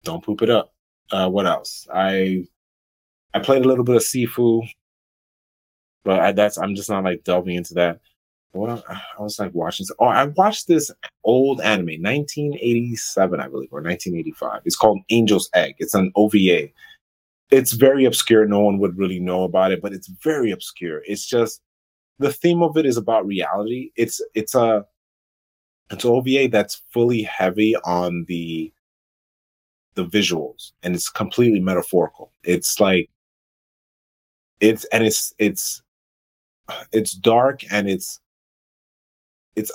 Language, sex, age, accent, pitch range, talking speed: English, male, 20-39, American, 90-120 Hz, 155 wpm